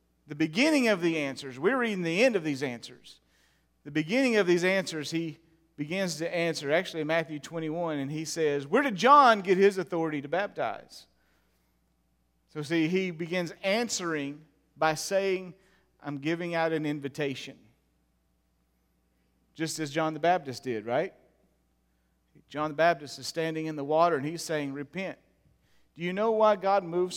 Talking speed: 160 wpm